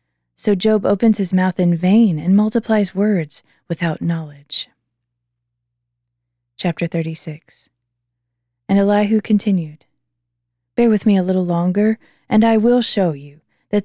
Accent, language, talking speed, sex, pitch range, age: American, English, 125 wpm, female, 155-205 Hz, 20-39